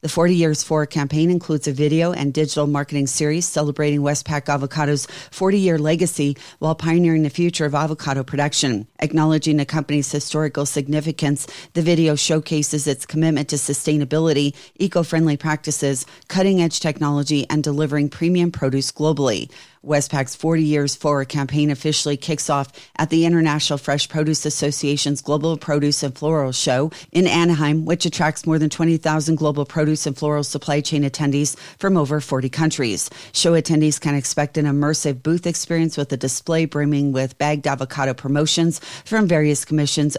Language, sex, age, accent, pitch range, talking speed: English, female, 40-59, American, 145-160 Hz, 150 wpm